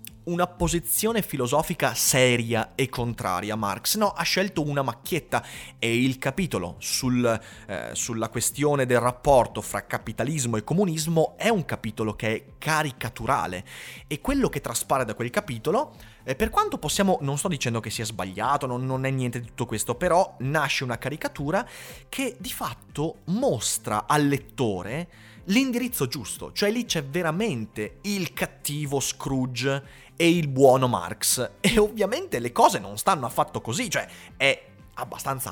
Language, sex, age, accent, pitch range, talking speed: Italian, male, 30-49, native, 115-160 Hz, 145 wpm